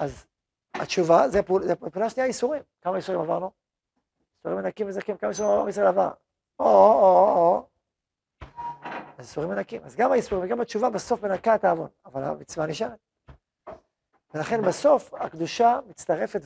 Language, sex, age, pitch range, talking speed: Hebrew, male, 40-59, 165-230 Hz, 140 wpm